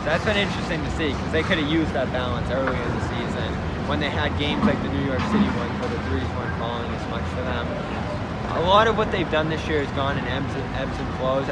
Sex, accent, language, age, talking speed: male, American, English, 20-39, 260 wpm